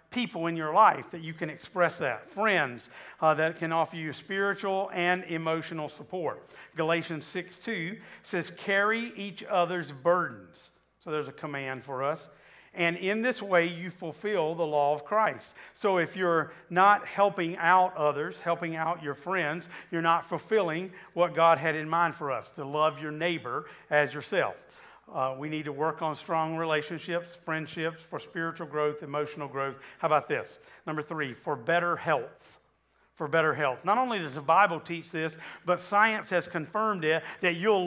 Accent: American